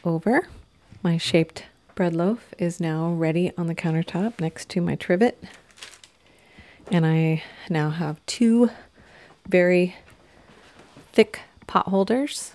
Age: 30-49